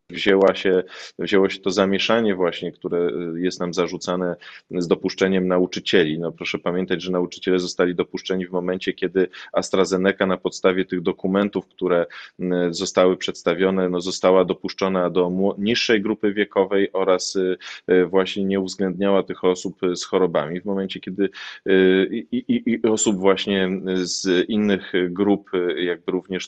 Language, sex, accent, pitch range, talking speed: Polish, male, native, 90-100 Hz, 135 wpm